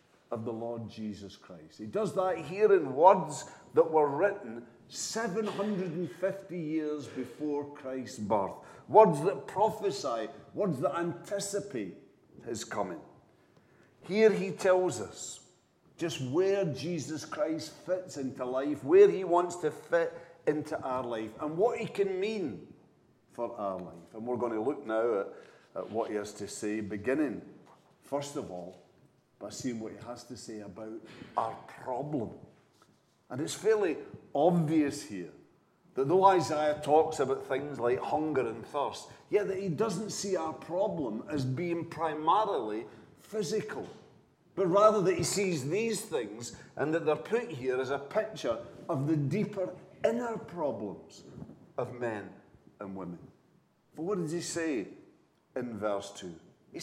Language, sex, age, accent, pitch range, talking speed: English, male, 50-69, British, 120-195 Hz, 150 wpm